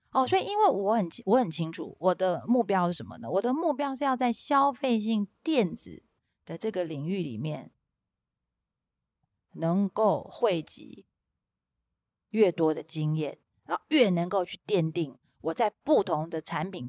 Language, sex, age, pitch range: Chinese, female, 30-49, 160-245 Hz